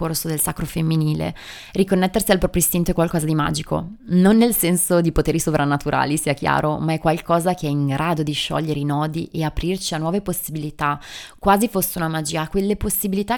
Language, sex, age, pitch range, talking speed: Italian, female, 20-39, 160-185 Hz, 190 wpm